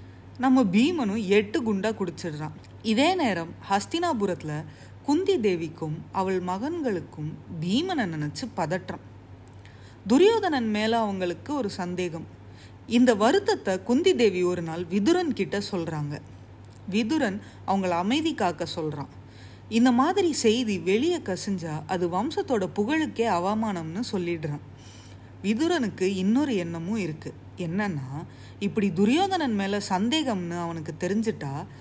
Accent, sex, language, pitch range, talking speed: native, female, Tamil, 165-235 Hz, 100 wpm